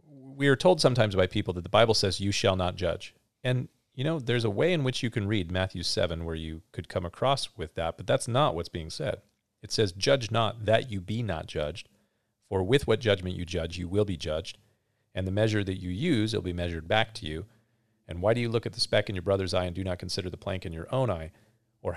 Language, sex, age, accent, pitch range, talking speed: English, male, 40-59, American, 90-115 Hz, 255 wpm